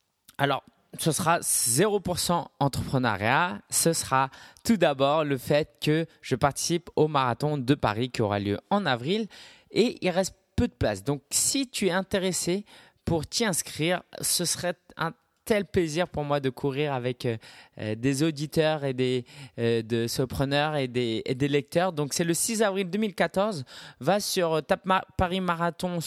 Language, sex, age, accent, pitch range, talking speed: French, male, 20-39, French, 115-165 Hz, 165 wpm